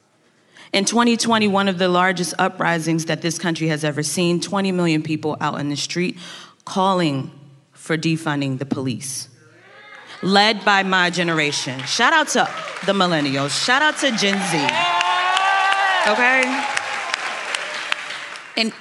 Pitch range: 155-205 Hz